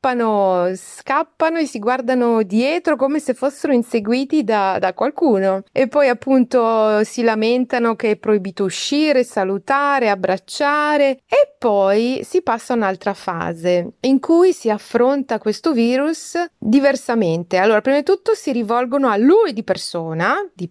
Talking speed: 140 wpm